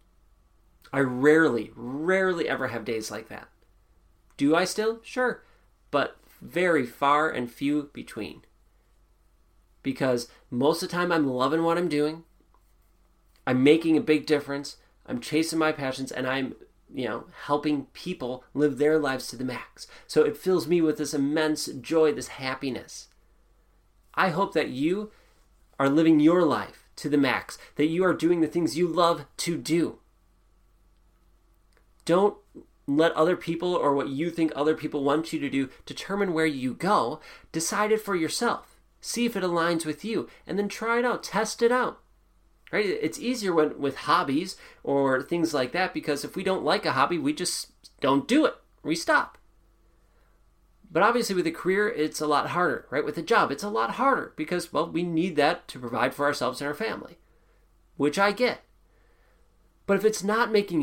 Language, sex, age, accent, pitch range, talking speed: English, male, 30-49, American, 130-175 Hz, 175 wpm